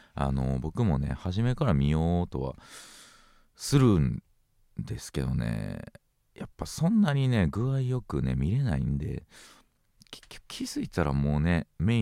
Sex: male